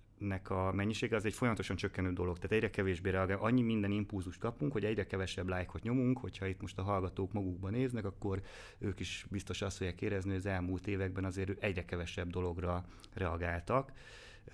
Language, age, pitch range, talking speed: Hungarian, 30-49, 95-110 Hz, 180 wpm